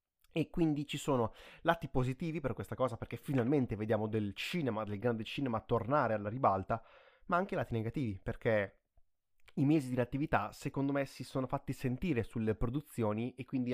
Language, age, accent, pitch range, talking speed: Italian, 20-39, native, 110-150 Hz, 170 wpm